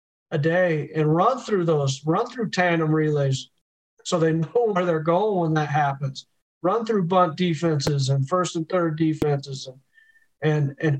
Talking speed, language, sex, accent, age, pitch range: 170 wpm, English, male, American, 40-59, 150-180 Hz